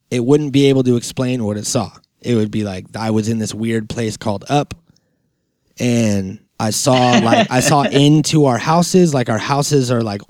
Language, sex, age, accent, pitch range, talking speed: English, male, 20-39, American, 115-140 Hz, 205 wpm